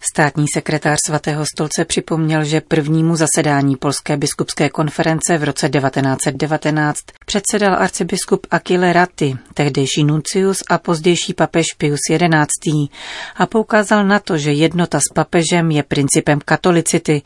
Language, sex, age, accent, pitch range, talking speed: Czech, female, 40-59, native, 150-175 Hz, 125 wpm